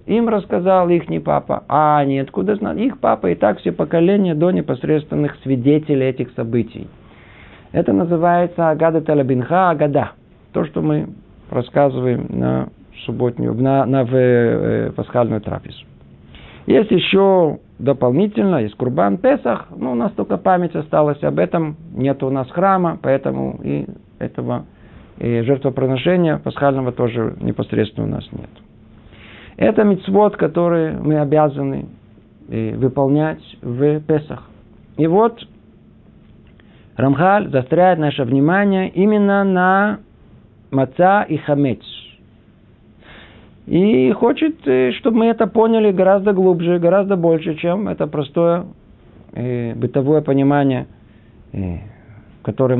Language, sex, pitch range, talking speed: Russian, male, 115-175 Hz, 115 wpm